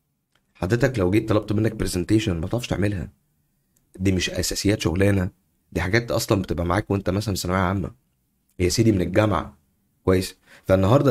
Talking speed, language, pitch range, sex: 155 wpm, Arabic, 95-130 Hz, male